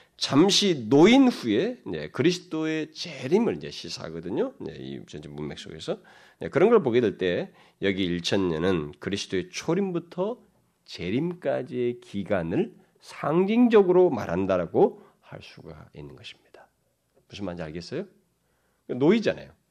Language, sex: Korean, male